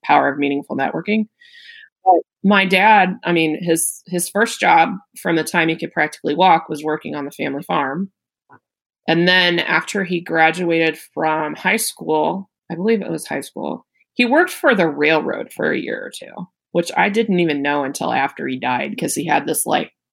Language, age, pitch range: English, 20-39, 155-195 Hz